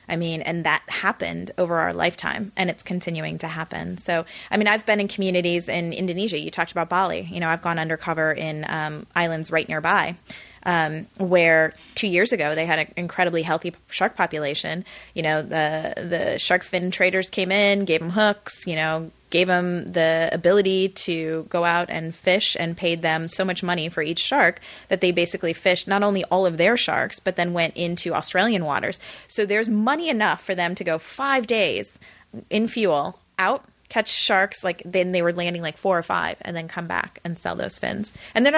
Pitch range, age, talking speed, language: 165-190 Hz, 20-39, 200 wpm, English